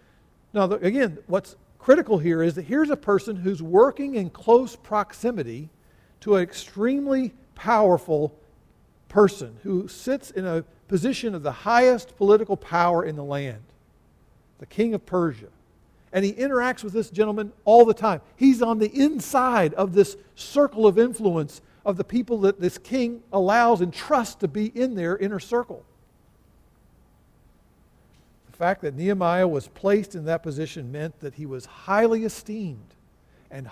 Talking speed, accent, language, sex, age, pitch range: 150 wpm, American, English, male, 50-69, 160-215 Hz